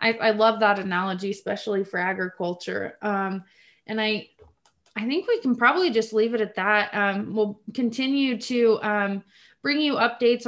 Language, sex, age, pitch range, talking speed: English, female, 20-39, 195-225 Hz, 165 wpm